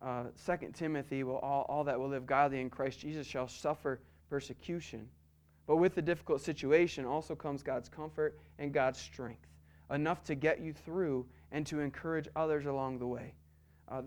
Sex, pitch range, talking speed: male, 120-165 Hz, 170 wpm